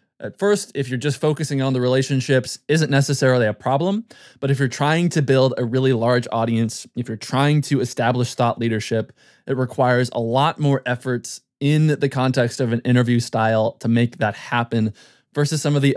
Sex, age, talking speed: male, 20-39, 190 wpm